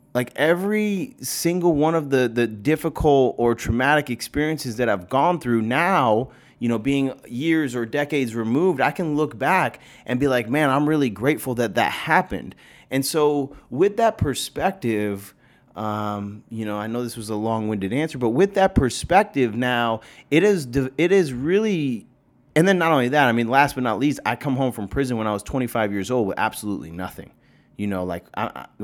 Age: 30-49